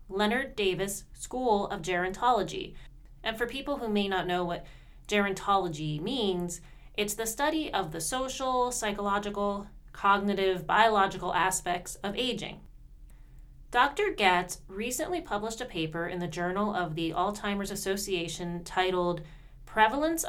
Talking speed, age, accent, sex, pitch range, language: 125 wpm, 30-49, American, female, 180-230 Hz, English